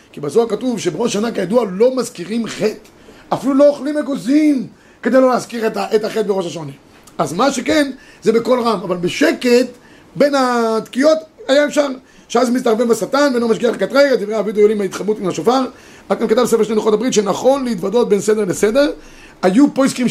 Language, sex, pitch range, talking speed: Hebrew, male, 205-260 Hz, 175 wpm